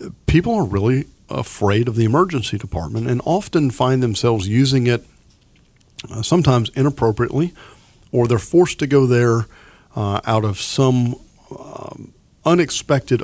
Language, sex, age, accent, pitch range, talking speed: English, male, 50-69, American, 100-135 Hz, 130 wpm